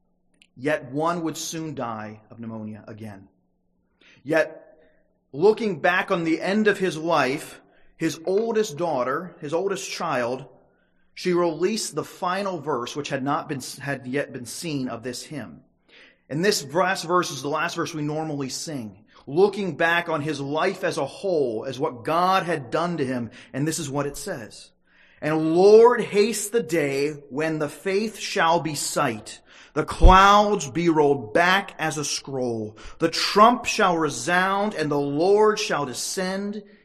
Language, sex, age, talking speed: English, male, 30-49, 160 wpm